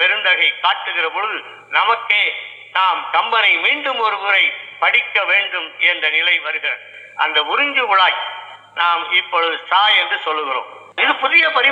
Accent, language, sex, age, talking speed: native, Tamil, male, 50-69, 60 wpm